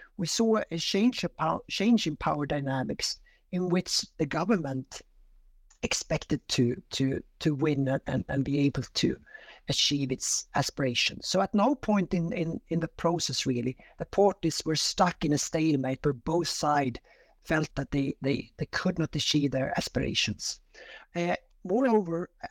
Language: English